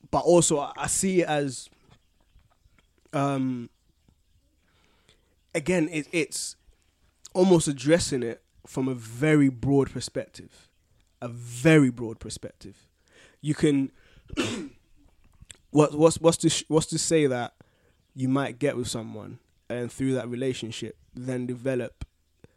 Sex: male